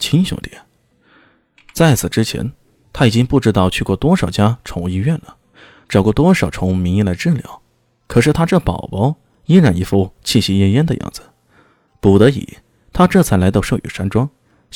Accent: native